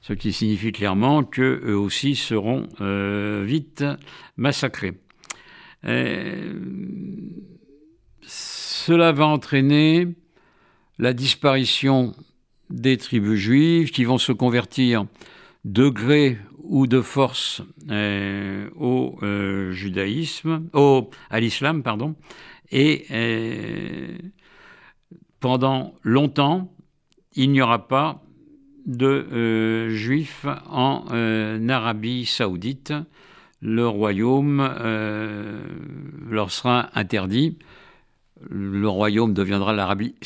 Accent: French